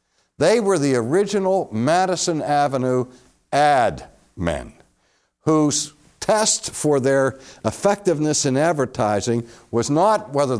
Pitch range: 100-150 Hz